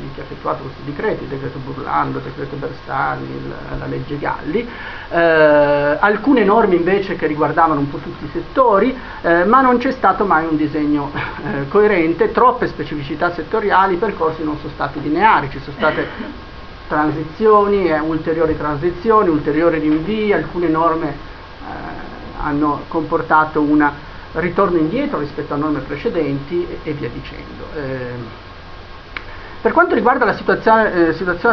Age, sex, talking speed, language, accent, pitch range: 50-69, male, 145 wpm, Italian, native, 145-195 Hz